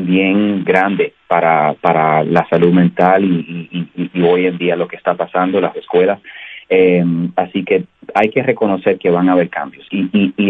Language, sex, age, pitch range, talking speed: Spanish, male, 30-49, 90-110 Hz, 200 wpm